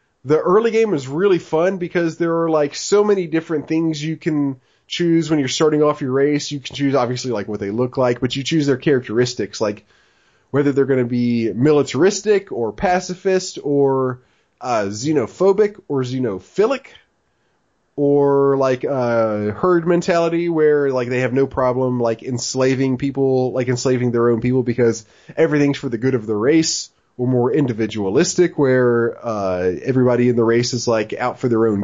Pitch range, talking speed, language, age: 125-150 Hz, 175 wpm, English, 30-49